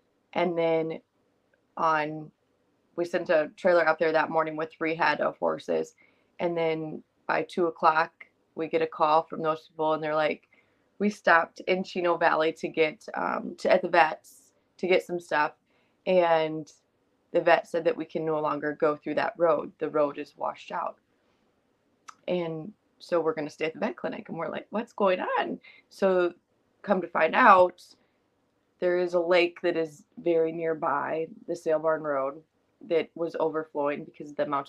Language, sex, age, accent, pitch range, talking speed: English, female, 20-39, American, 155-180 Hz, 180 wpm